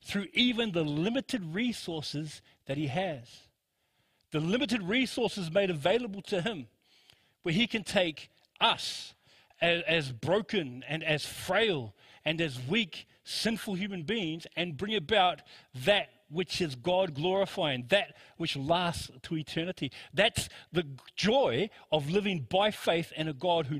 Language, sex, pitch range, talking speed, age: English, male, 145-190 Hz, 140 wpm, 40-59